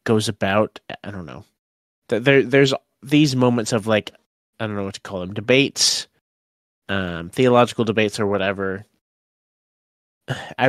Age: 20-39